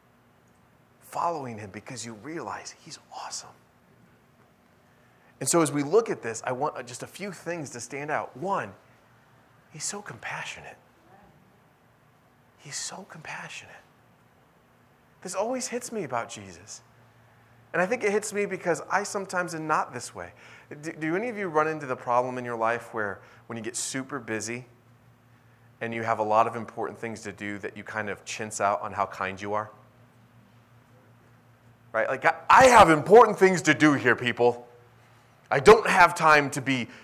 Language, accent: English, American